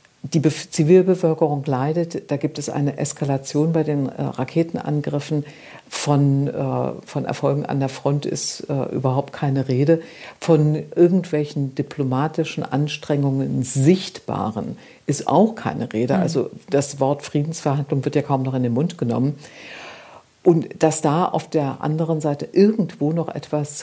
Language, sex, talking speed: German, female, 140 wpm